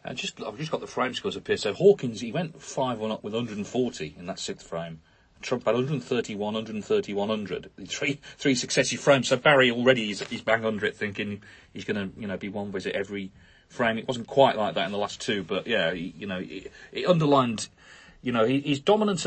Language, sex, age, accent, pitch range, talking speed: English, male, 40-59, British, 105-140 Hz, 220 wpm